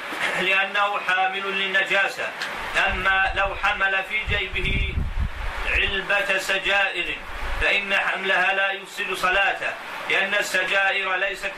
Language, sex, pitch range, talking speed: Arabic, male, 190-195 Hz, 95 wpm